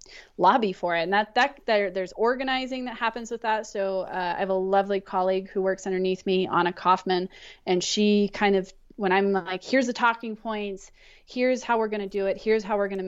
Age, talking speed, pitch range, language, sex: 30-49, 215 wpm, 185-210 Hz, English, female